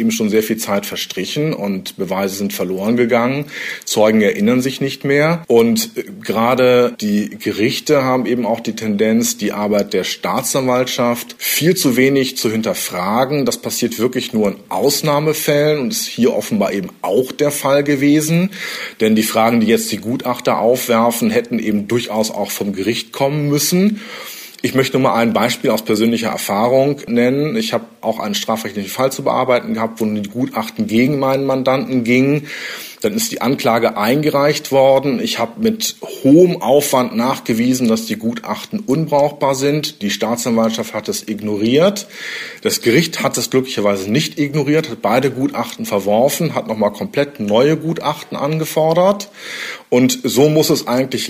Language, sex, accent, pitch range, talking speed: German, male, German, 115-150 Hz, 160 wpm